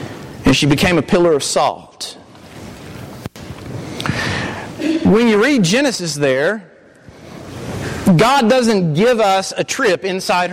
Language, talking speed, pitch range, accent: English, 110 wpm, 165-235 Hz, American